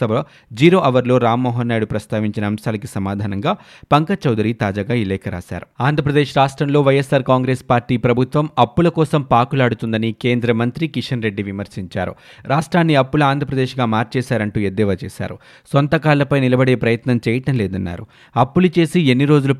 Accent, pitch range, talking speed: native, 115-140 Hz, 70 wpm